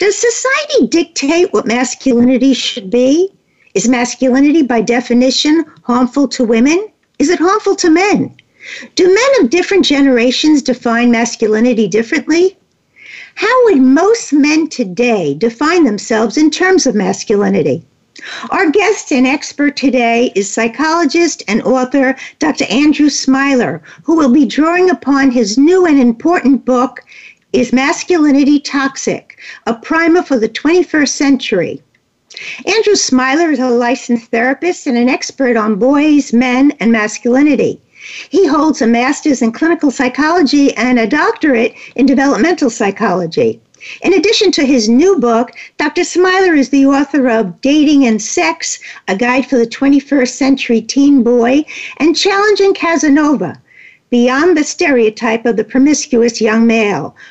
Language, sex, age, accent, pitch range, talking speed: English, female, 60-79, American, 245-325 Hz, 135 wpm